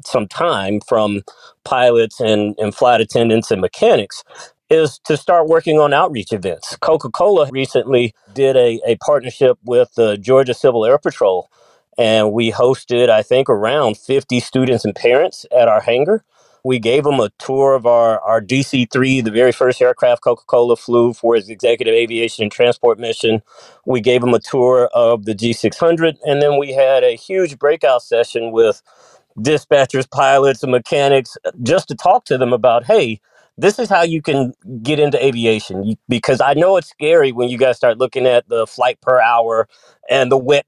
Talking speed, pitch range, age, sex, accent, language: 175 wpm, 115-150 Hz, 40-59, male, American, English